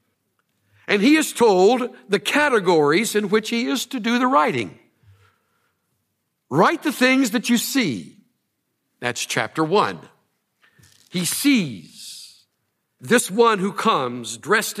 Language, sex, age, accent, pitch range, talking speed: English, male, 60-79, American, 165-225 Hz, 120 wpm